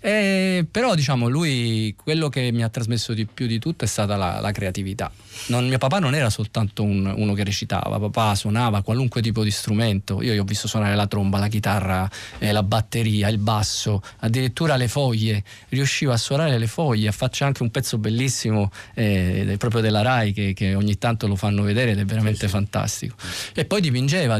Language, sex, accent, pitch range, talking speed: Italian, male, native, 105-130 Hz, 195 wpm